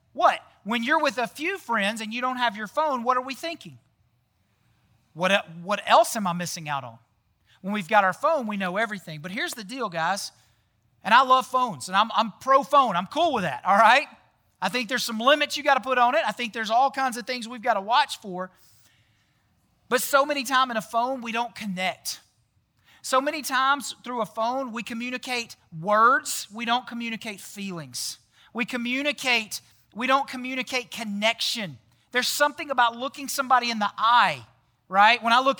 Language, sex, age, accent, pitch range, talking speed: English, male, 40-59, American, 185-260 Hz, 195 wpm